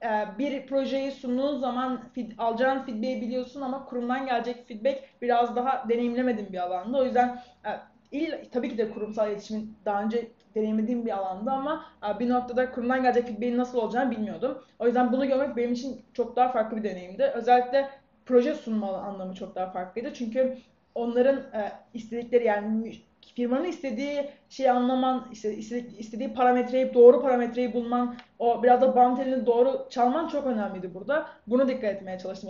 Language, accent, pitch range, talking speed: Turkish, native, 225-255 Hz, 155 wpm